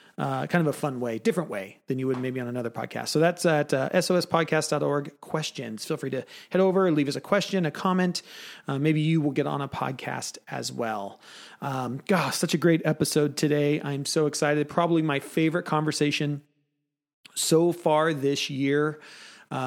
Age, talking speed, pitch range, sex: 30-49, 185 wpm, 140-165 Hz, male